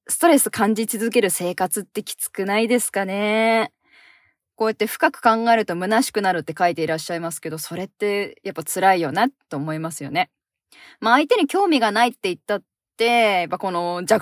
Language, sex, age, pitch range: Japanese, female, 20-39, 185-260 Hz